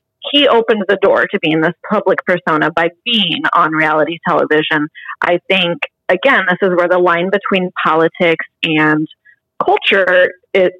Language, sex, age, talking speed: English, female, 30-49, 150 wpm